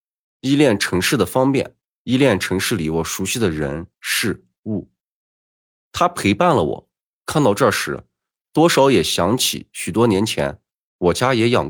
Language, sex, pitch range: Chinese, male, 90-135 Hz